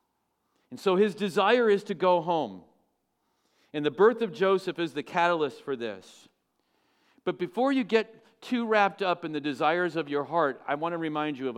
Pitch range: 150-200 Hz